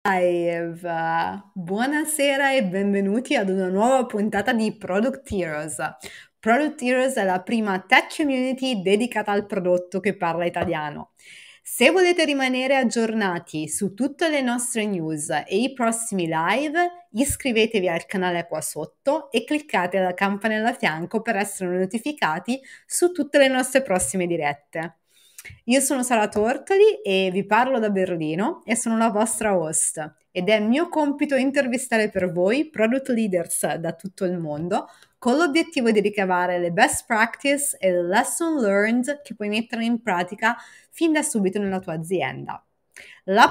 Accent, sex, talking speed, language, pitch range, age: native, female, 150 wpm, Italian, 185-260 Hz, 30-49